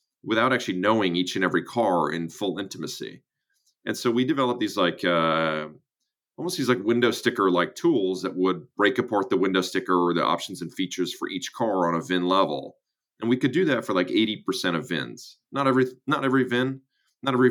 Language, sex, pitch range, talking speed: English, male, 80-120 Hz, 210 wpm